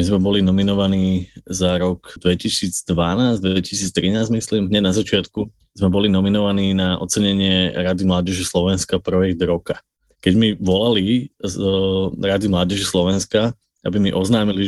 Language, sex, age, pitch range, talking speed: Slovak, male, 20-39, 95-110 Hz, 125 wpm